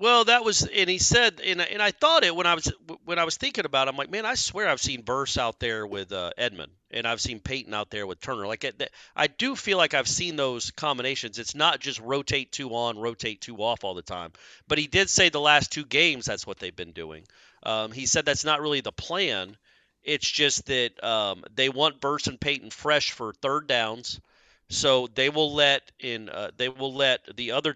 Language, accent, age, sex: English, American, 40-59, male